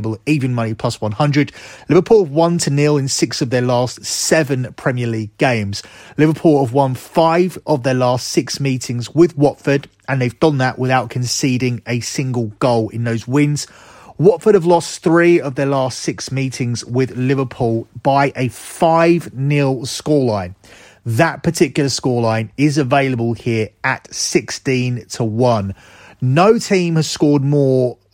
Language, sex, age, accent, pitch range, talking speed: English, male, 30-49, British, 120-150 Hz, 145 wpm